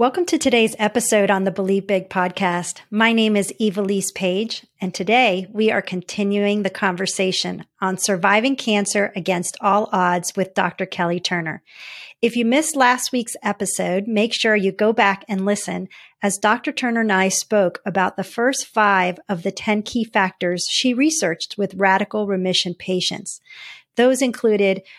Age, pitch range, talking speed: 40-59, 190-230 Hz, 160 wpm